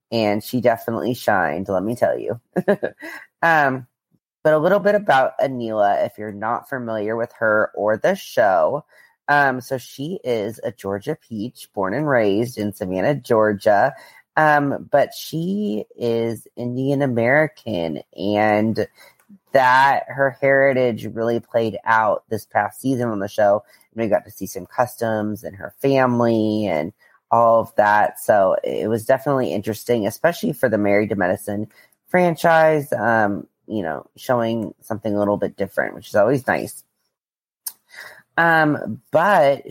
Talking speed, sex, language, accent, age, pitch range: 145 wpm, female, English, American, 30-49, 105-130 Hz